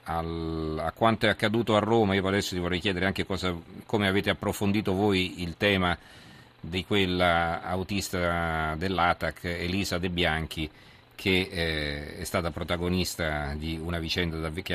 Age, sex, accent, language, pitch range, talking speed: 40-59, male, native, Italian, 80-100 Hz, 150 wpm